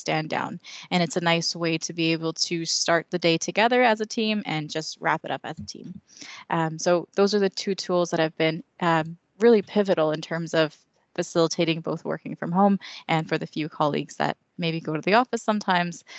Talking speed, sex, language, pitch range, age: 220 wpm, female, English, 160-180 Hz, 20-39